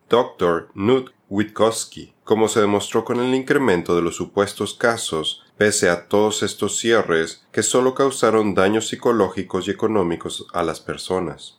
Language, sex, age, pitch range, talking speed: Spanish, male, 30-49, 90-110 Hz, 145 wpm